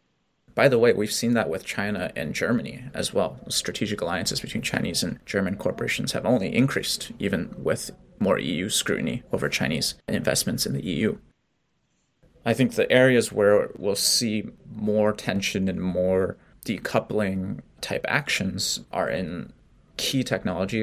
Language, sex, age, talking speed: English, male, 20-39, 145 wpm